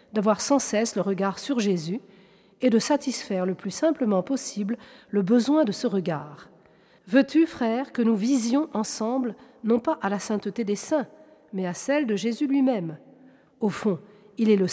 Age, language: 40-59, French